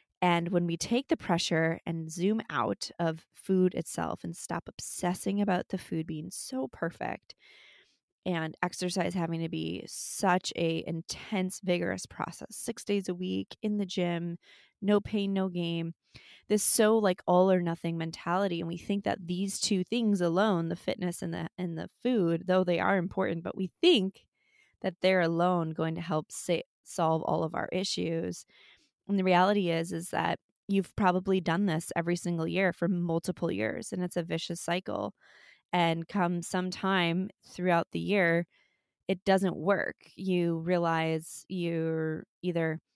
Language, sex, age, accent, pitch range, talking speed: English, female, 20-39, American, 165-190 Hz, 165 wpm